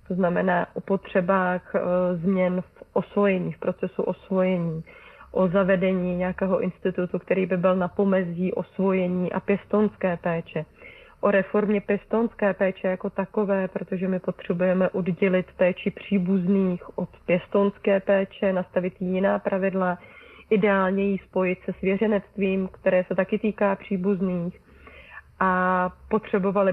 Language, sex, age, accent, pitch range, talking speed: Czech, female, 30-49, native, 185-200 Hz, 120 wpm